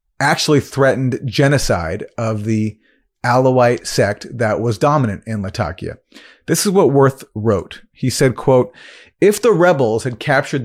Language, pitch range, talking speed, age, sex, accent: English, 110-140 Hz, 140 wpm, 40-59, male, American